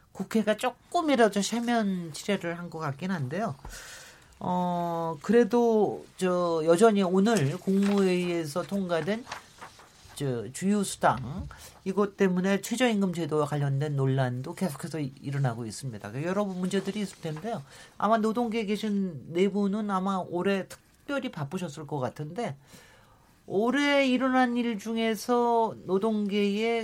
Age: 40-59